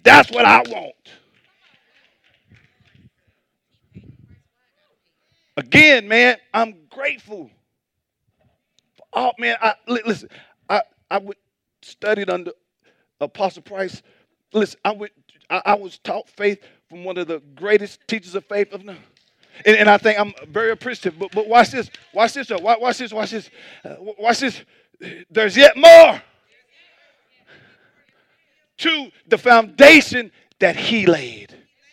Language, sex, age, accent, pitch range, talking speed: English, male, 40-59, American, 200-260 Hz, 120 wpm